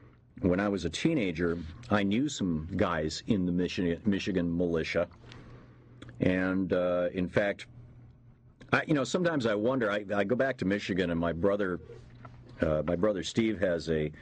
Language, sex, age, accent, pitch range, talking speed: English, male, 50-69, American, 95-125 Hz, 155 wpm